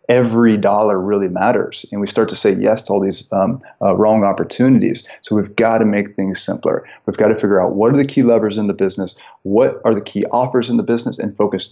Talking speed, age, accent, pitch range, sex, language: 240 wpm, 20-39, American, 100-120 Hz, male, English